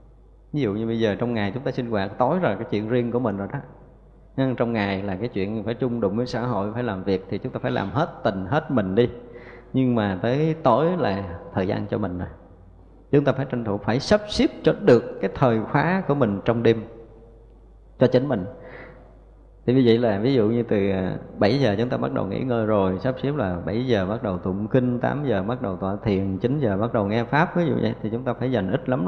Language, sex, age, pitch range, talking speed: Vietnamese, male, 20-39, 100-130 Hz, 255 wpm